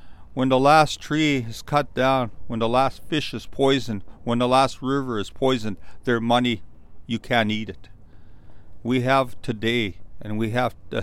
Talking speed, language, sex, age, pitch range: 175 wpm, English, male, 40-59, 95-130 Hz